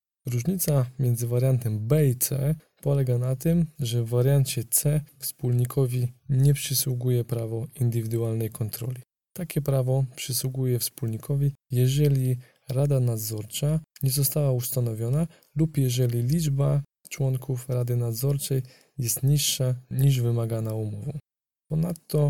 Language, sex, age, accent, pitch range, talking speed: Polish, male, 20-39, native, 120-140 Hz, 110 wpm